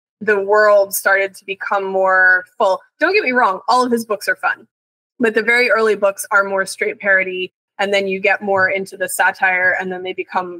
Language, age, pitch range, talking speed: English, 20-39, 190-230 Hz, 215 wpm